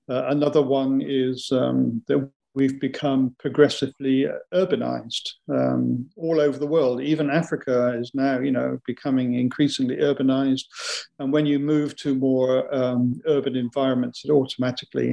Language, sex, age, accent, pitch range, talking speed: English, male, 50-69, British, 125-140 Hz, 140 wpm